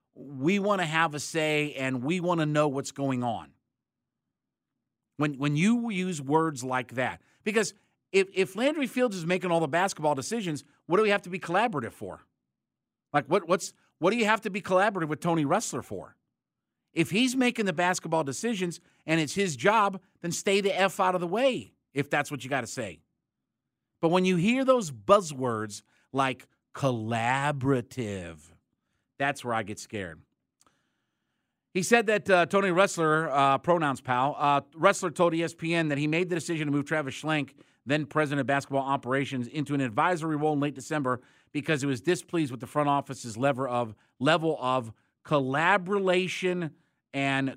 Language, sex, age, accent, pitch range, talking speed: English, male, 50-69, American, 135-180 Hz, 175 wpm